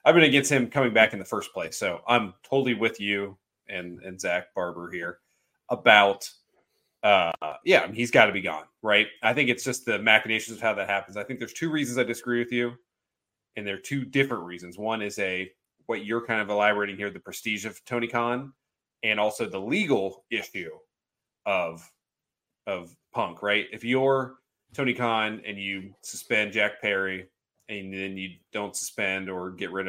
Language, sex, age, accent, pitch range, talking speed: English, male, 30-49, American, 95-120 Hz, 190 wpm